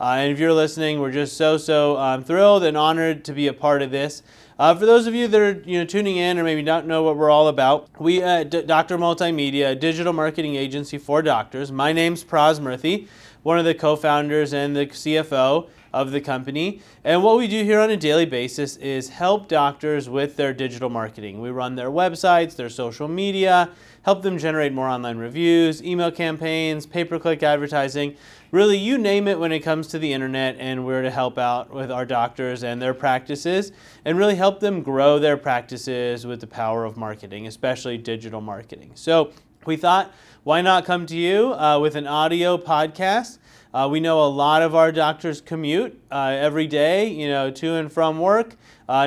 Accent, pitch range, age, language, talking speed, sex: American, 140-170 Hz, 30-49, English, 205 wpm, male